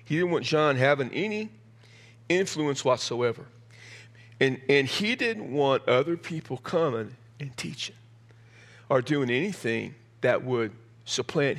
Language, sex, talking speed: English, male, 125 wpm